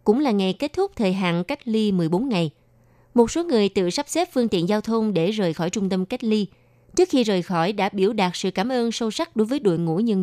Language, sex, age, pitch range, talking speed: Vietnamese, female, 20-39, 175-235 Hz, 265 wpm